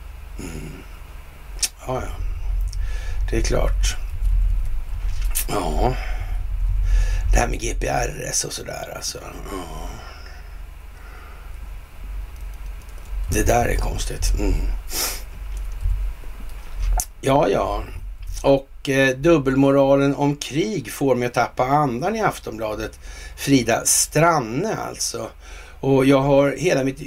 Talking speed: 95 wpm